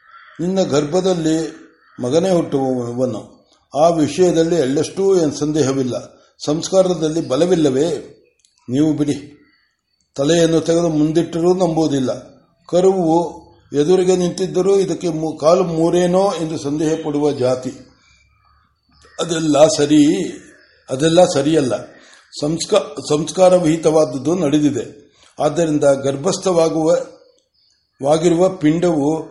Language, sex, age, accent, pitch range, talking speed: Kannada, male, 60-79, native, 150-180 Hz, 70 wpm